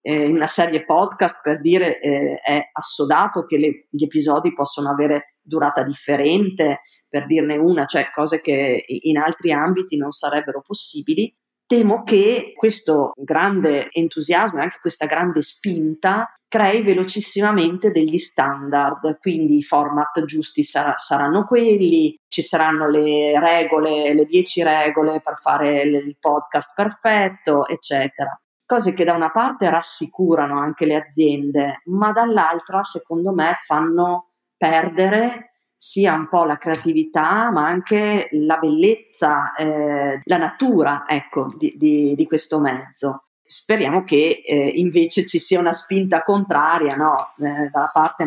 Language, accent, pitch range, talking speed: Italian, native, 150-180 Hz, 130 wpm